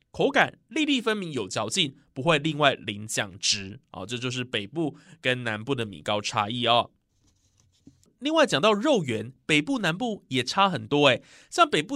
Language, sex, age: Chinese, male, 20-39